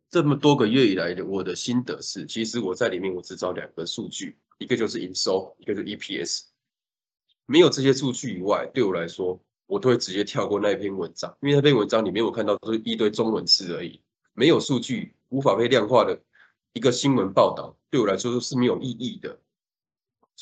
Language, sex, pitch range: Chinese, male, 110-145 Hz